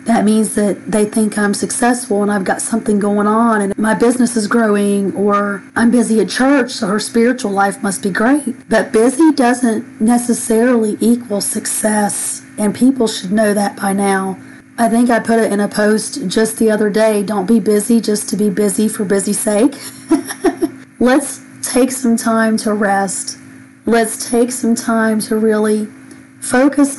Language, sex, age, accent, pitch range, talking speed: English, female, 40-59, American, 205-240 Hz, 175 wpm